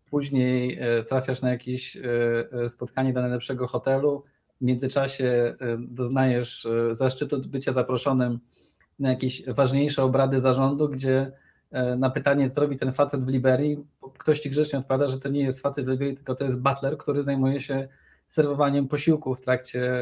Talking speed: 150 wpm